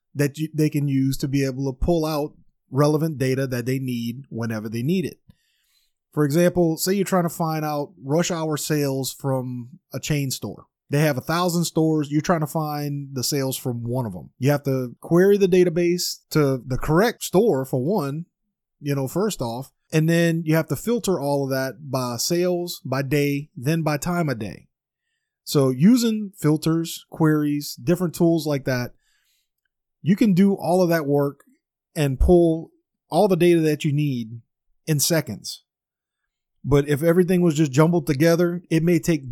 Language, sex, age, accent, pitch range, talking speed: English, male, 30-49, American, 135-170 Hz, 180 wpm